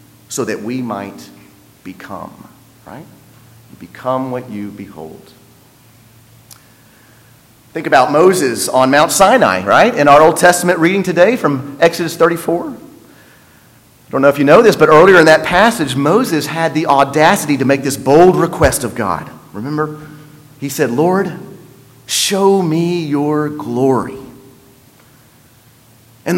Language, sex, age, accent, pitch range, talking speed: English, male, 40-59, American, 125-185 Hz, 130 wpm